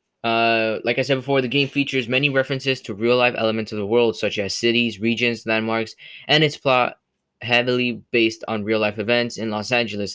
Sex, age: male, 10-29